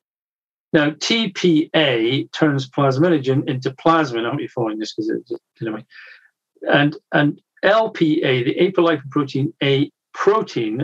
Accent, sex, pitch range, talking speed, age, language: British, male, 130-160 Hz, 135 wpm, 50-69, English